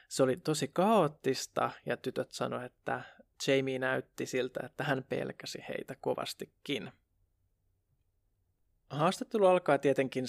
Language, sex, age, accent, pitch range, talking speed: Finnish, male, 20-39, native, 125-155 Hz, 110 wpm